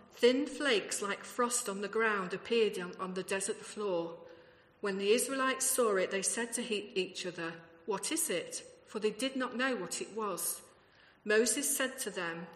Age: 40-59